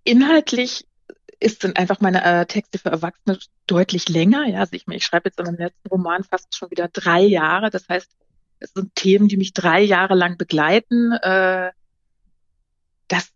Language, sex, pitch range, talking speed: German, female, 175-205 Hz, 180 wpm